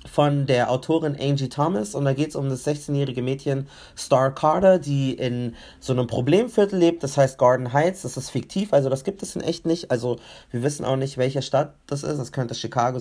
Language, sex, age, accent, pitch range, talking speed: German, male, 30-49, German, 130-160 Hz, 215 wpm